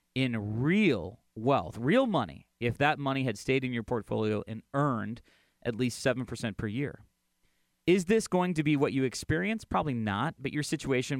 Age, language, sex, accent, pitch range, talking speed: 30-49, English, male, American, 115-170 Hz, 175 wpm